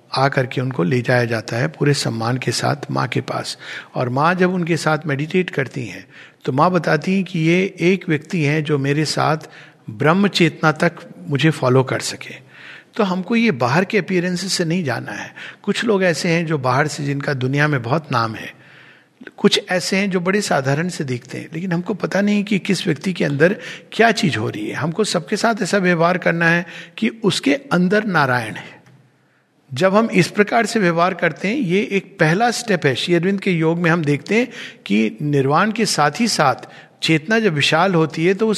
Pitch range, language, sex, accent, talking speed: 145-195 Hz, Hindi, male, native, 205 wpm